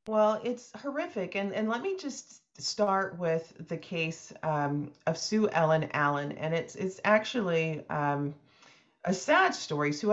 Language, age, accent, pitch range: English, 40-59, American, 155-200 Hz